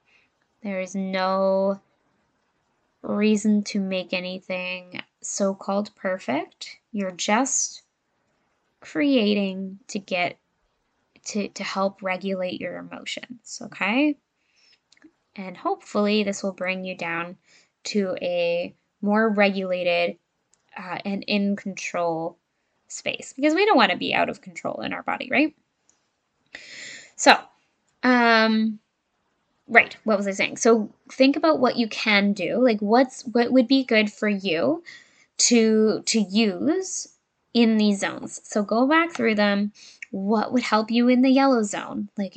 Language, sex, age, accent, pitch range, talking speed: English, female, 10-29, American, 195-250 Hz, 130 wpm